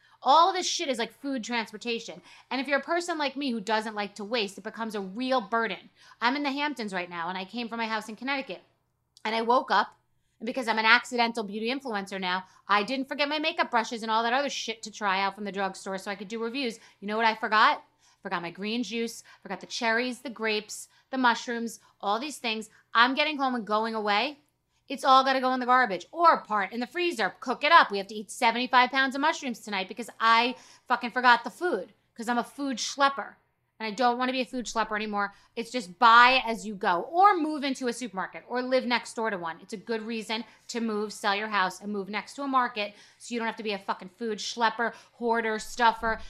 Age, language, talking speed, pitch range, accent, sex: 30-49, English, 240 wpm, 210-255 Hz, American, female